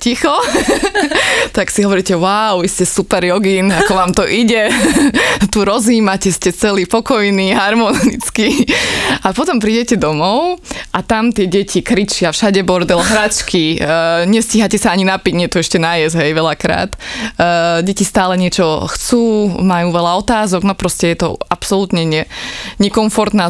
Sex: female